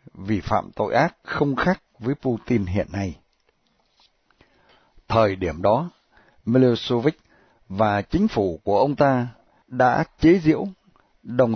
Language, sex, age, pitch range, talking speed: Vietnamese, male, 60-79, 110-150 Hz, 125 wpm